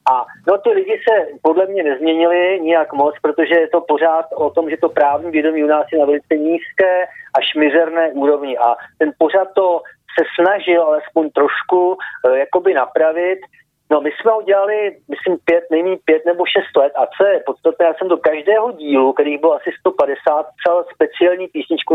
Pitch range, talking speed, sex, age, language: 145-180 Hz, 180 wpm, male, 40-59, Slovak